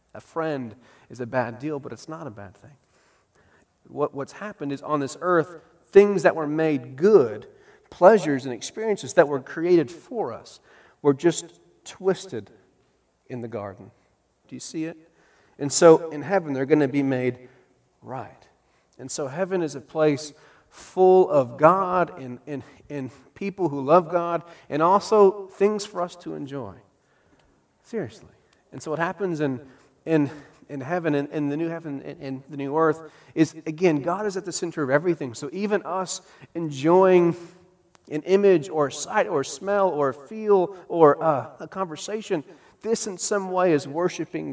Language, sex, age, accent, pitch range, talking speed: English, male, 40-59, American, 135-175 Hz, 165 wpm